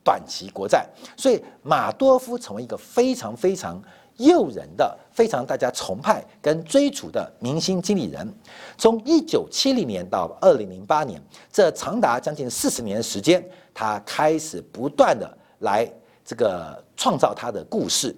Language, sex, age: Chinese, male, 50-69